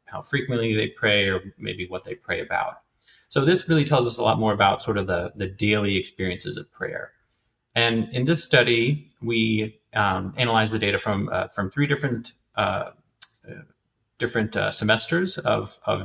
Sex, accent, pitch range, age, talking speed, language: male, American, 105-130 Hz, 30-49, 175 wpm, English